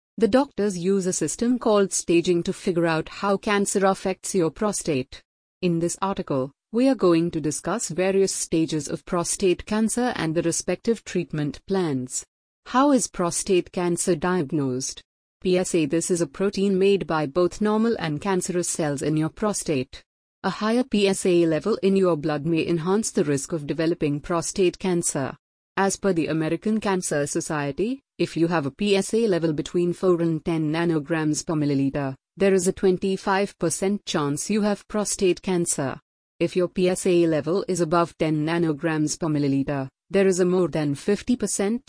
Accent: Indian